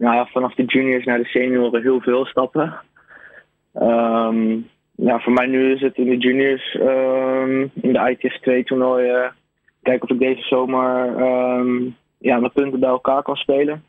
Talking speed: 175 wpm